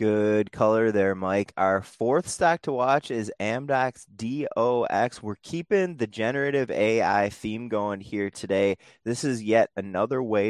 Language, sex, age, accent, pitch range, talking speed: English, male, 20-39, American, 95-120 Hz, 150 wpm